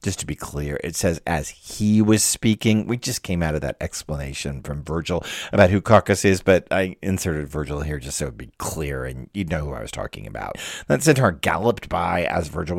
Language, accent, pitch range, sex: English, American, 90-125 Hz, male